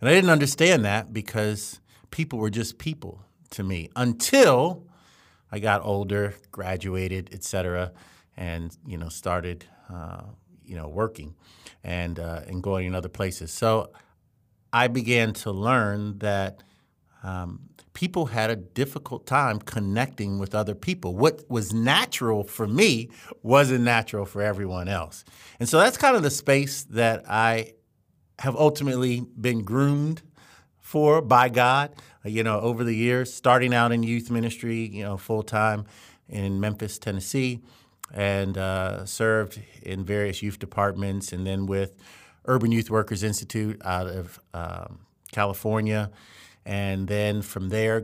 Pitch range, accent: 100-120 Hz, American